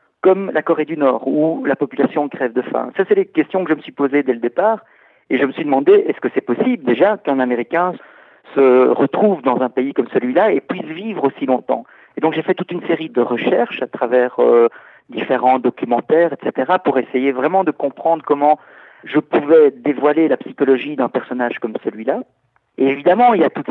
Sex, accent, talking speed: male, French, 210 wpm